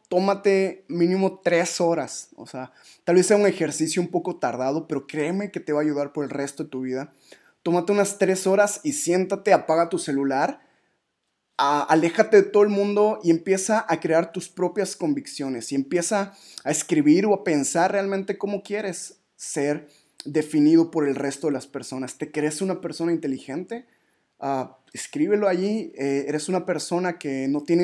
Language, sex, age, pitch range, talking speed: Spanish, male, 20-39, 155-200 Hz, 175 wpm